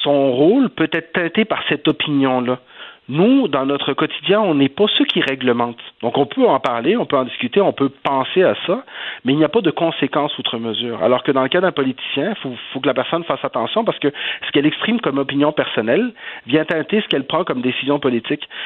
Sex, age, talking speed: male, 40-59, 230 wpm